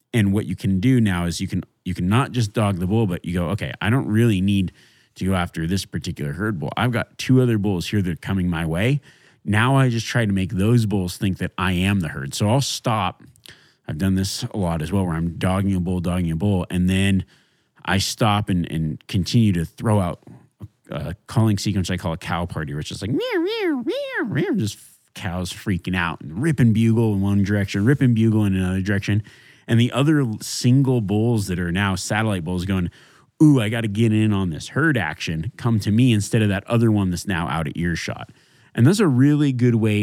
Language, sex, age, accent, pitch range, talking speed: English, male, 30-49, American, 90-115 Hz, 230 wpm